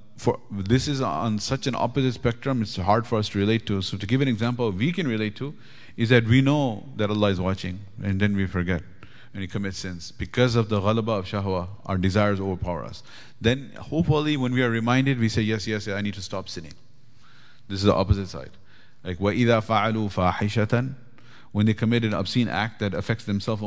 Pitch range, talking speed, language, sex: 100-125 Hz, 215 wpm, English, male